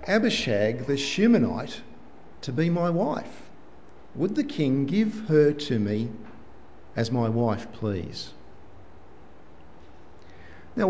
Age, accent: 50-69, Australian